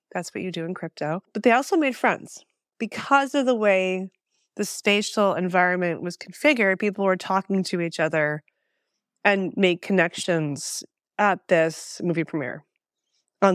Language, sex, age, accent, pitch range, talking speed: English, female, 30-49, American, 170-235 Hz, 150 wpm